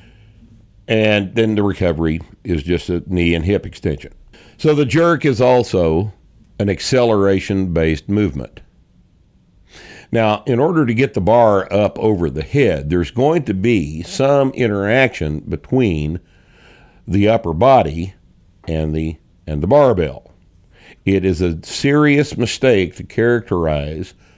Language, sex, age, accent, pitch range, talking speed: English, male, 50-69, American, 90-120 Hz, 130 wpm